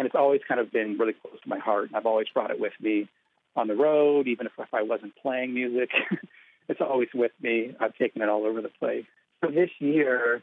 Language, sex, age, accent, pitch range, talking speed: English, male, 40-59, American, 110-130 Hz, 235 wpm